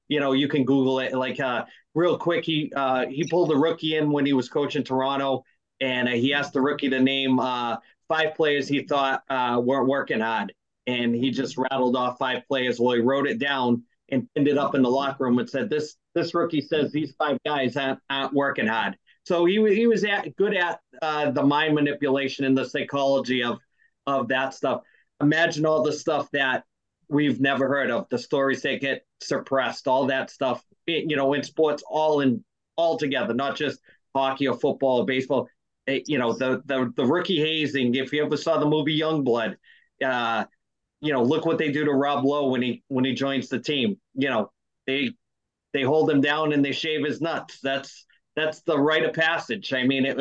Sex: male